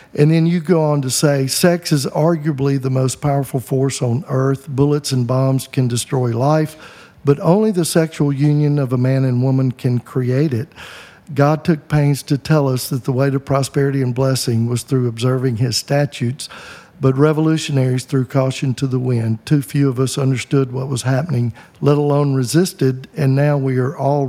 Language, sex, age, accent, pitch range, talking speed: English, male, 50-69, American, 130-150 Hz, 190 wpm